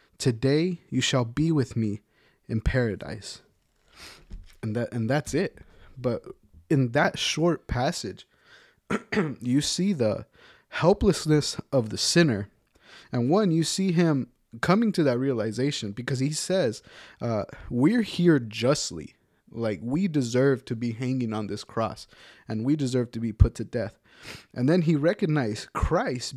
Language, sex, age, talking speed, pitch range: English, male, 20-39, 145 wpm, 115-155 Hz